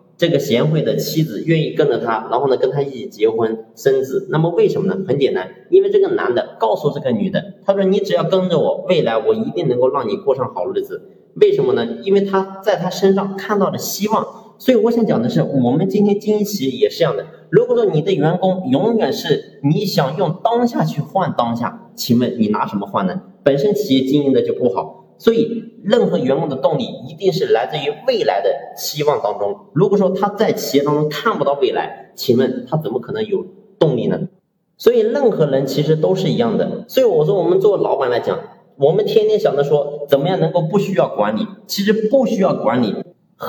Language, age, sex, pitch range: Chinese, 30-49, male, 160-235 Hz